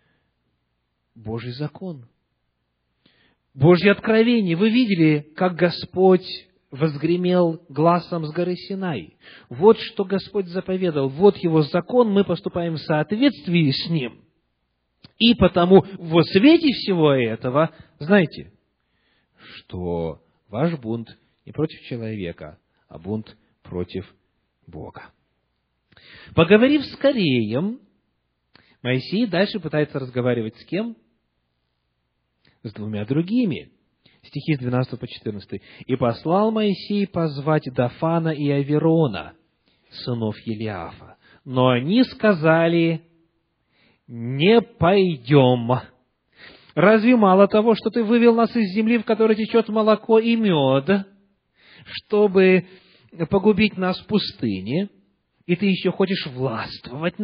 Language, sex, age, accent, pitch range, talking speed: Russian, male, 40-59, native, 125-200 Hz, 105 wpm